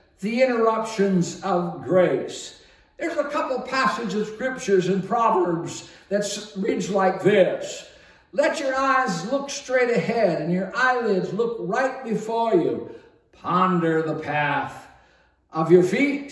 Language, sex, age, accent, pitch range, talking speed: English, male, 60-79, American, 170-225 Hz, 130 wpm